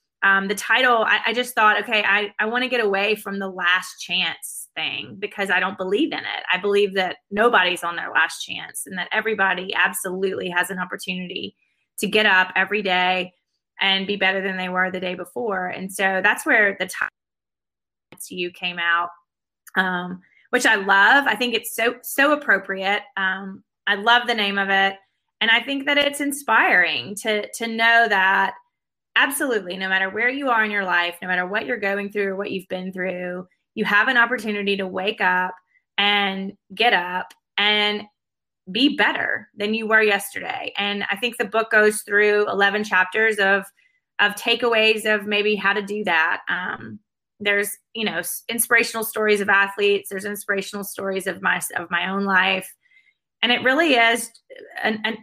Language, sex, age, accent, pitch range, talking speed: English, female, 20-39, American, 190-220 Hz, 185 wpm